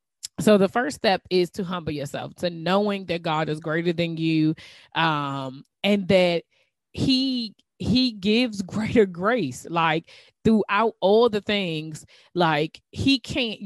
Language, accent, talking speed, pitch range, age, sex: English, American, 140 wpm, 155-190 Hz, 20-39, female